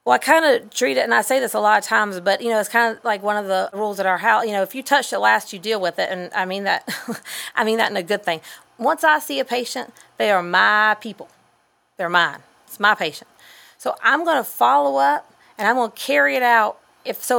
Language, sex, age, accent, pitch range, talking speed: English, female, 30-49, American, 190-240 Hz, 275 wpm